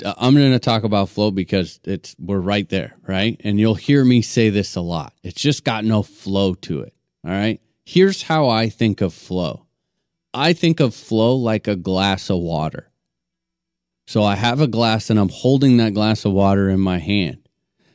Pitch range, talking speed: 105-140 Hz, 195 wpm